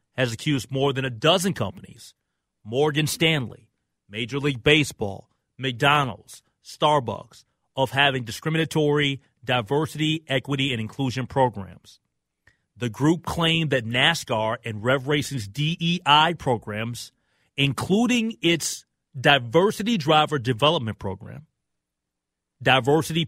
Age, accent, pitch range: 30-49, American, 105-150 Hz